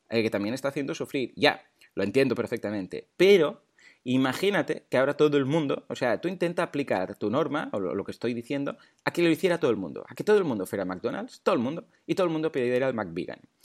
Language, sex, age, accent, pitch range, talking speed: Spanish, male, 30-49, Spanish, 100-140 Hz, 240 wpm